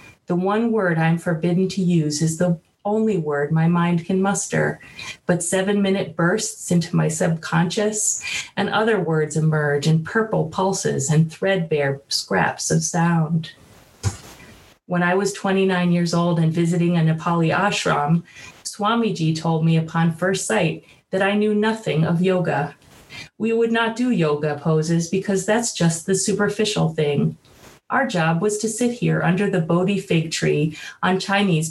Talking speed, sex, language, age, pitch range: 155 wpm, female, English, 30-49, 160-200 Hz